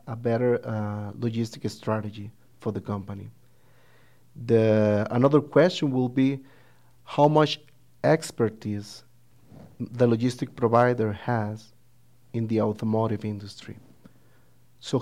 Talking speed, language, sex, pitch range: 100 wpm, English, male, 110-130 Hz